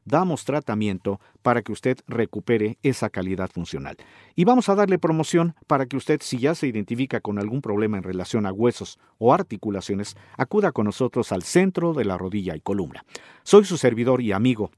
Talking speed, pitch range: 185 wpm, 105-150 Hz